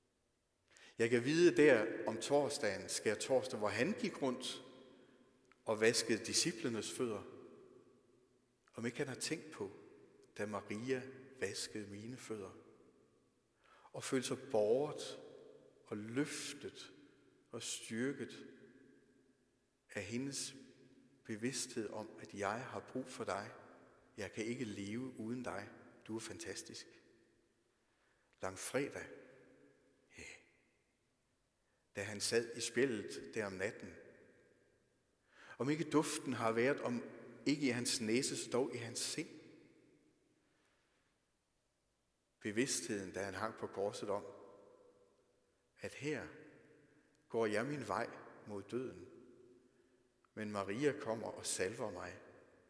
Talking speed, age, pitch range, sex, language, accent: 115 wpm, 60-79, 110-145 Hz, male, Danish, native